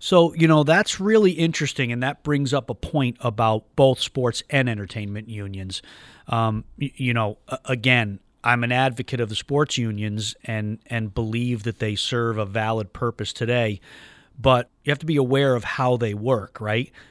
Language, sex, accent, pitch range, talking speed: English, male, American, 110-130 Hz, 175 wpm